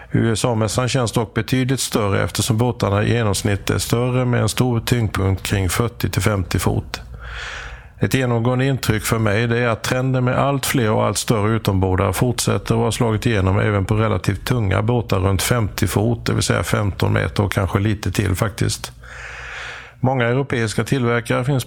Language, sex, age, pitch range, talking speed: Swedish, male, 50-69, 100-120 Hz, 170 wpm